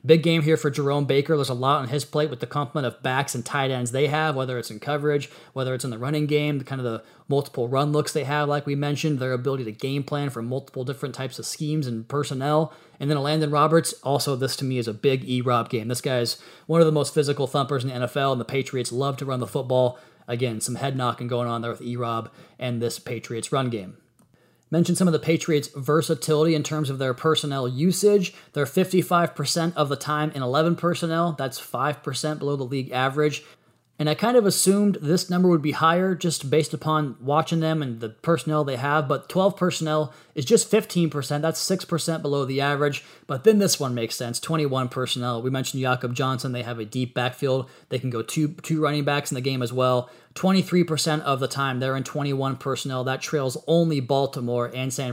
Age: 30-49